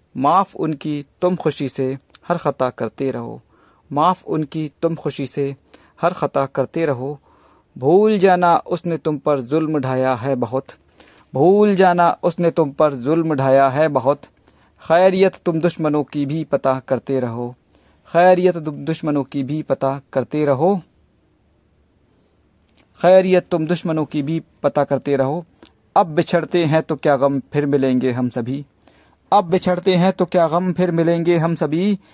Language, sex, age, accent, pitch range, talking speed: Hindi, male, 50-69, native, 140-170 Hz, 150 wpm